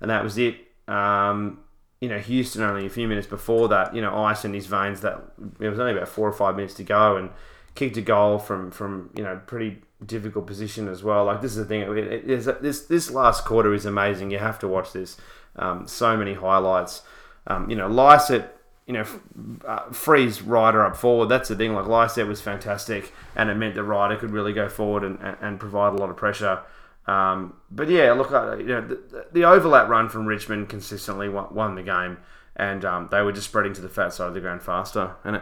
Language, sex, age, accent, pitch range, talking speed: English, male, 20-39, Australian, 100-115 Hz, 225 wpm